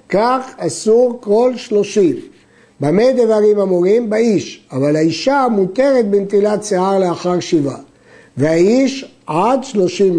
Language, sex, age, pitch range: Hebrew, male, 60-79, 175-230 Hz